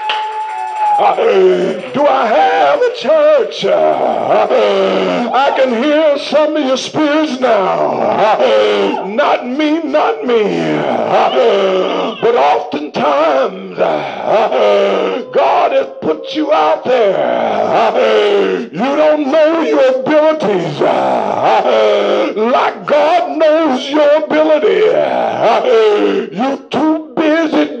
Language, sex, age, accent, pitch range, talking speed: English, male, 60-79, American, 260-315 Hz, 85 wpm